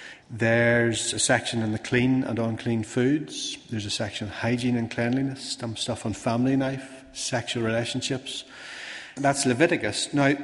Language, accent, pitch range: English, Irish, 110-135 Hz